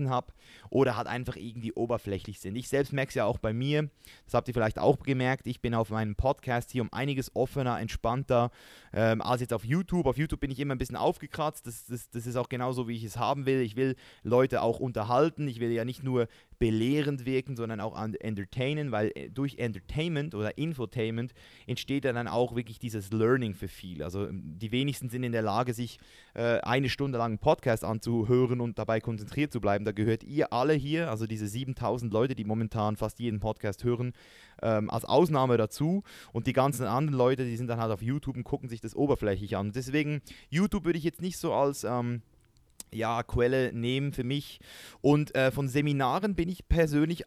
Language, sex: German, male